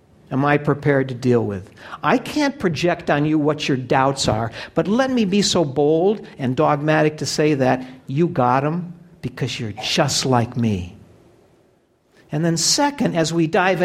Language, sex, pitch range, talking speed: English, male, 130-190 Hz, 175 wpm